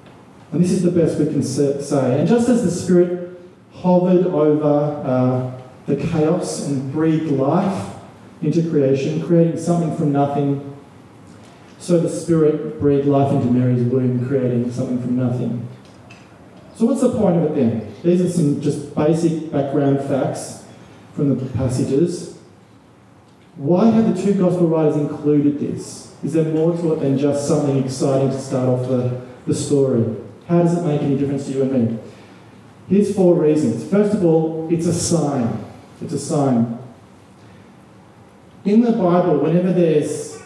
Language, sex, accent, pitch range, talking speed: English, male, Australian, 135-170 Hz, 155 wpm